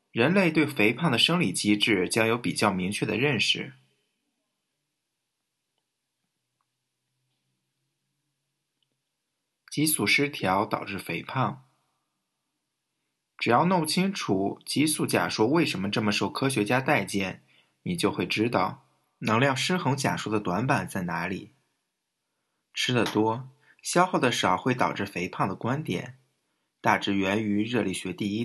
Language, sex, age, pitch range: Chinese, male, 20-39, 100-135 Hz